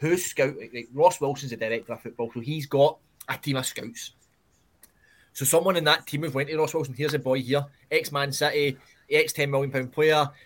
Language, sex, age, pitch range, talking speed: English, male, 20-39, 130-170 Hz, 205 wpm